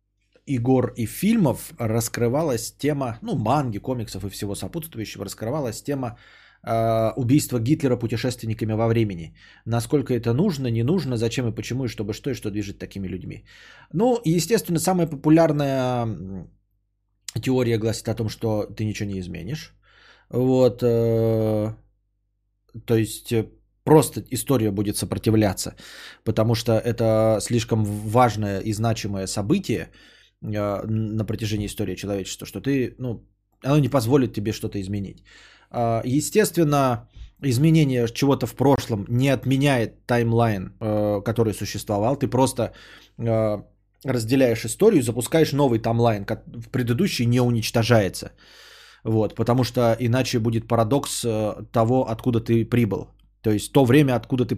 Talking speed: 130 wpm